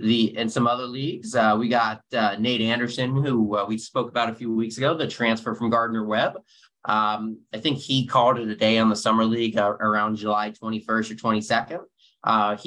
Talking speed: 210 wpm